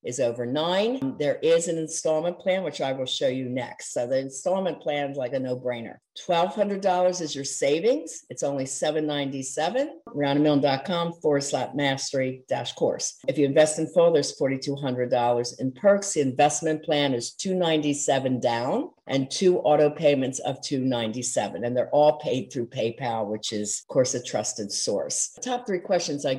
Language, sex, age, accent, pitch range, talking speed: English, female, 50-69, American, 135-170 Hz, 180 wpm